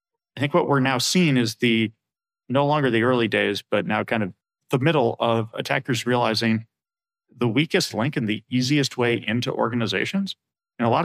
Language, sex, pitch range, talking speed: English, male, 110-140 Hz, 185 wpm